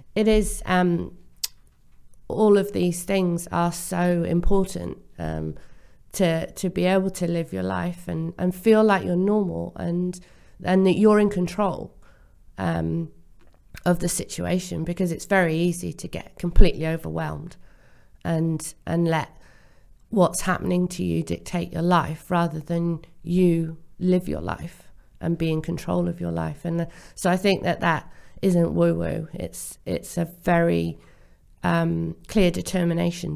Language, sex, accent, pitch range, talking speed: English, female, British, 140-180 Hz, 150 wpm